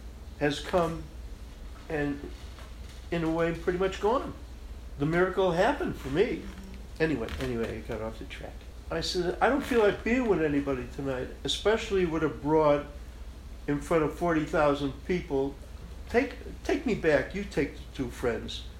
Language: English